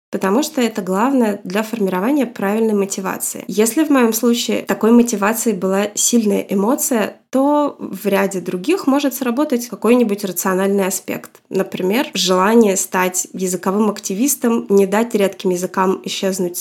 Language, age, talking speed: Russian, 20-39, 130 wpm